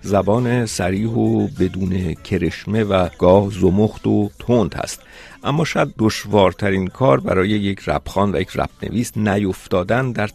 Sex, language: male, Persian